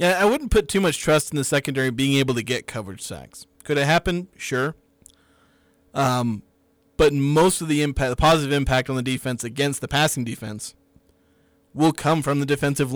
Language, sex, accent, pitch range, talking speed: English, male, American, 115-145 Hz, 190 wpm